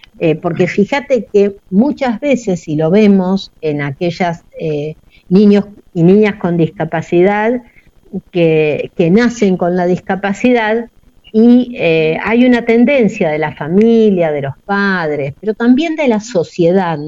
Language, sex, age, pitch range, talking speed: Spanish, female, 50-69, 155-205 Hz, 135 wpm